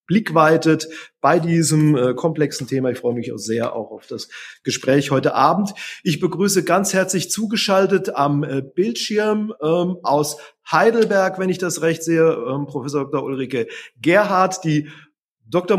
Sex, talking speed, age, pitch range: male, 150 wpm, 30-49, 145-185 Hz